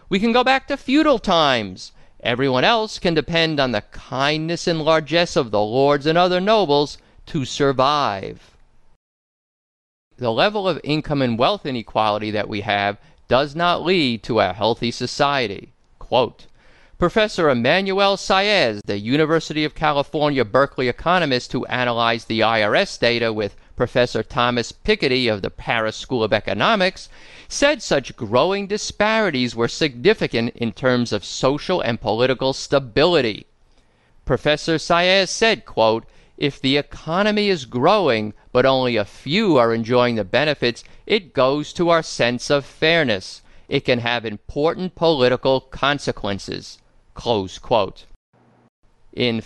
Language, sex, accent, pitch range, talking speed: English, male, American, 120-175 Hz, 135 wpm